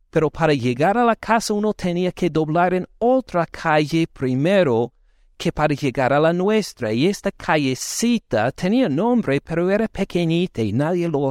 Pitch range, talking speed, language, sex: 140-195 Hz, 165 wpm, Spanish, male